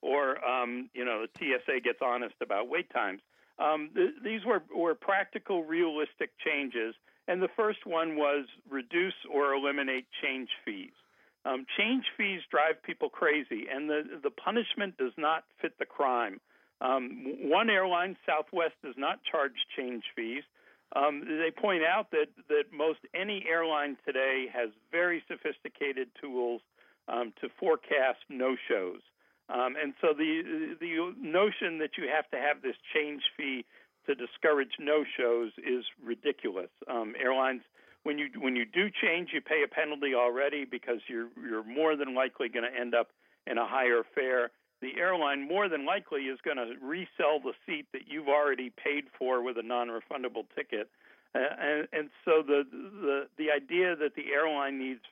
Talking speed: 160 wpm